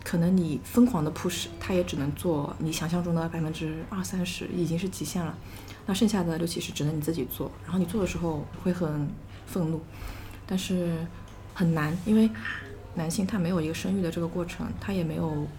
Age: 20-39